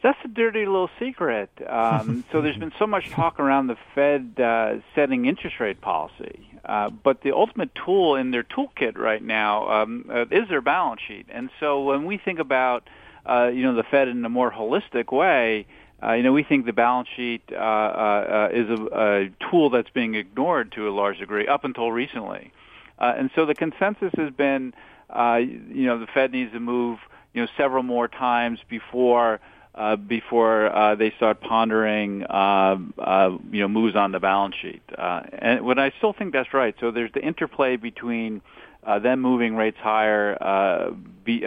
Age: 50-69